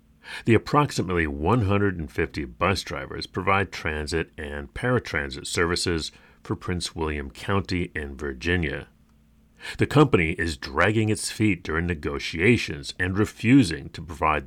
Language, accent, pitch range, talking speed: English, American, 75-105 Hz, 115 wpm